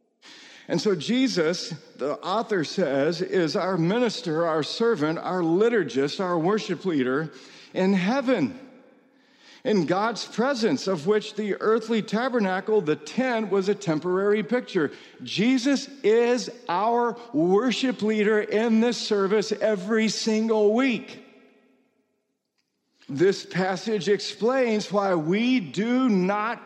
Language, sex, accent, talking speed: English, male, American, 115 wpm